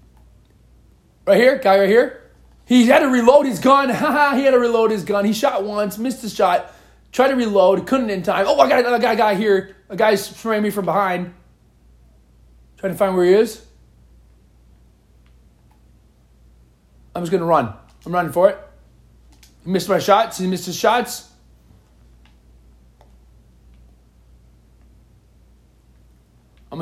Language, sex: English, male